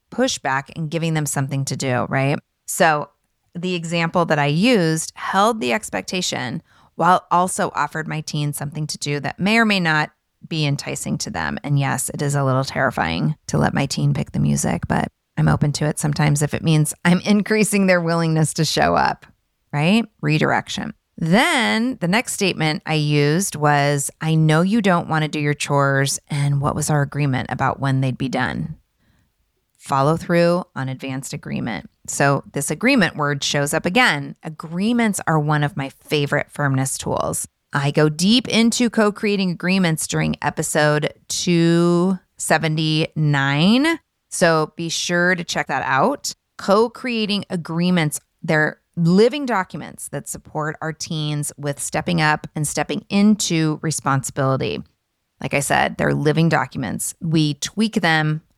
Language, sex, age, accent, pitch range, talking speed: English, female, 30-49, American, 145-180 Hz, 155 wpm